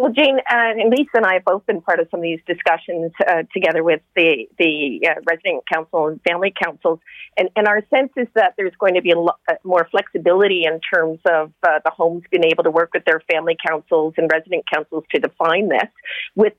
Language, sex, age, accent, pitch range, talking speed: English, female, 40-59, American, 160-185 Hz, 220 wpm